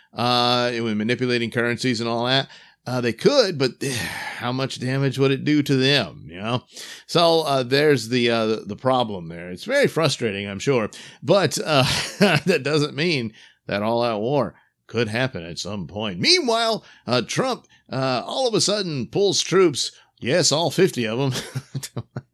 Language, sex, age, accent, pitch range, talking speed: English, male, 50-69, American, 115-150 Hz, 175 wpm